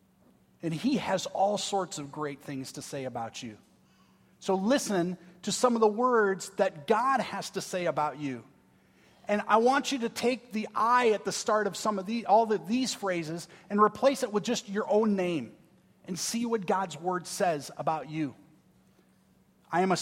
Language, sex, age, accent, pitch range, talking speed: English, male, 30-49, American, 175-220 Hz, 190 wpm